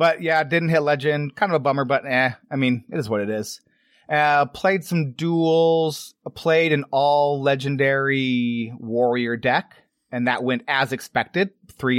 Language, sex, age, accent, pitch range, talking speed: English, male, 30-49, American, 120-145 Hz, 175 wpm